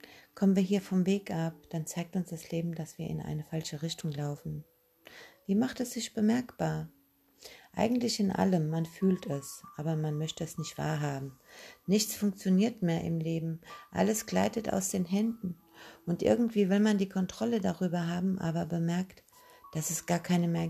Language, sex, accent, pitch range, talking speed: German, female, German, 160-195 Hz, 175 wpm